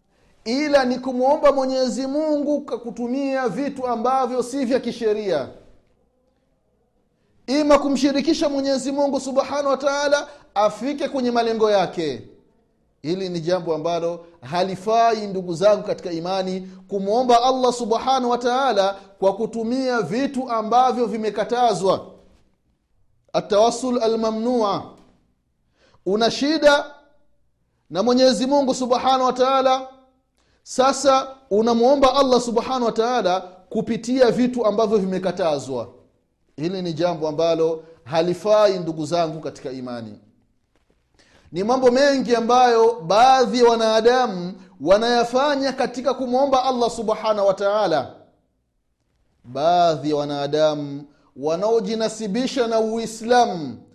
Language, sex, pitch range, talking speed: Swahili, male, 185-260 Hz, 100 wpm